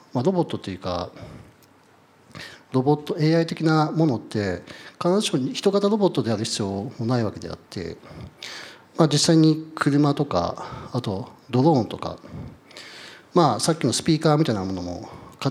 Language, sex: Japanese, male